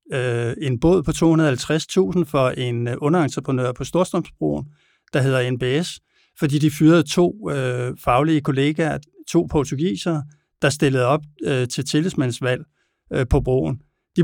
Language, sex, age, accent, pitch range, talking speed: Danish, male, 60-79, native, 130-160 Hz, 130 wpm